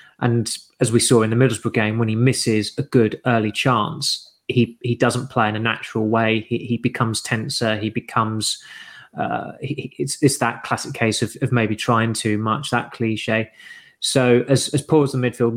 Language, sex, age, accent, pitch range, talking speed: English, male, 20-39, British, 115-130 Hz, 195 wpm